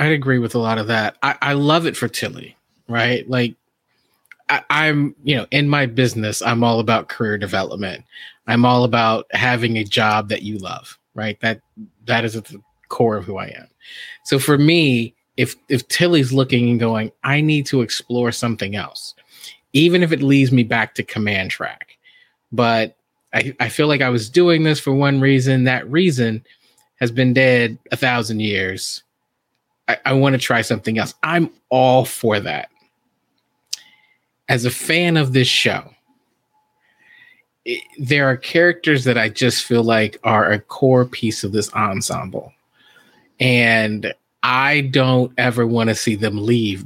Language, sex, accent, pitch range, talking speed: English, male, American, 115-145 Hz, 170 wpm